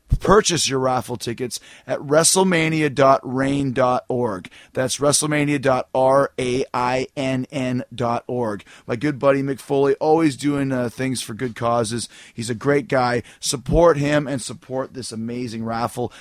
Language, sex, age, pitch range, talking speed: English, male, 30-49, 120-150 Hz, 115 wpm